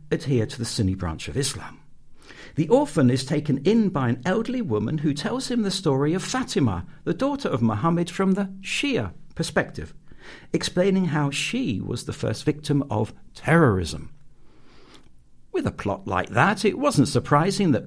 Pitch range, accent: 115-175 Hz, British